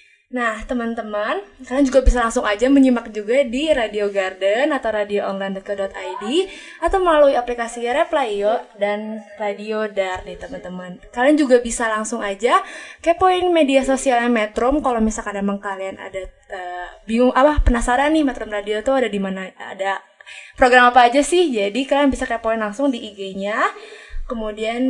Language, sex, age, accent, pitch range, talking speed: Indonesian, female, 20-39, native, 210-275 Hz, 145 wpm